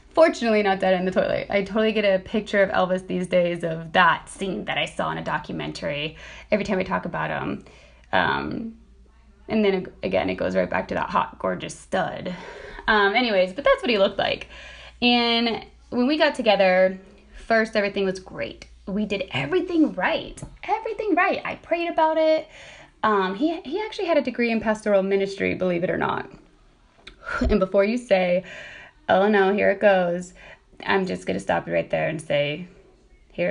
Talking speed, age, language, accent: 185 wpm, 20-39, English, American